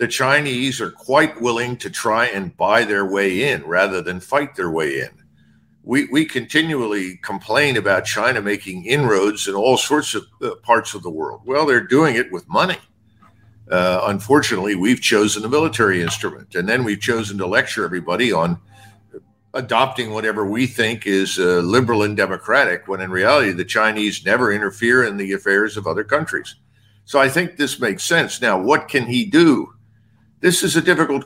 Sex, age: male, 50-69